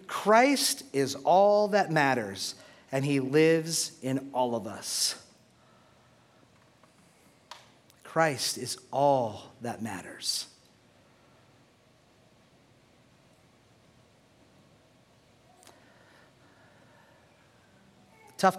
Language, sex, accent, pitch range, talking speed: English, male, American, 125-150 Hz, 60 wpm